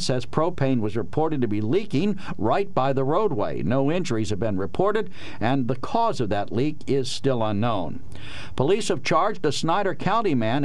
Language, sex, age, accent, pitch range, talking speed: English, male, 50-69, American, 115-150 Hz, 180 wpm